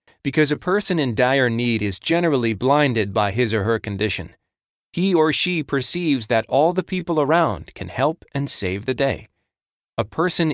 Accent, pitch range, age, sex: American, 105-140 Hz, 30-49, male